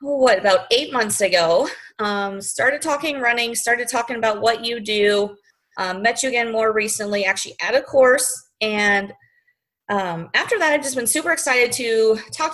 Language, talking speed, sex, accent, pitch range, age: English, 170 wpm, female, American, 195-250 Hz, 30-49